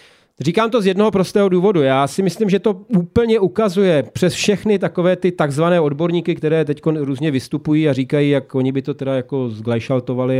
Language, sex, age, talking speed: Czech, male, 40-59, 185 wpm